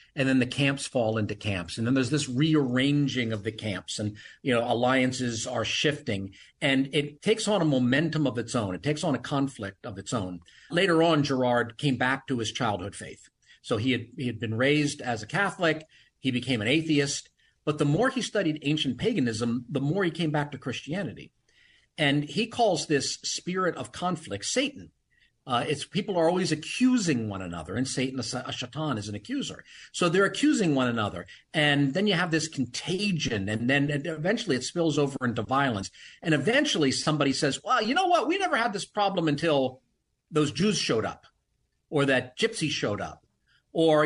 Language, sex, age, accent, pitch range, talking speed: English, male, 50-69, American, 125-170 Hz, 190 wpm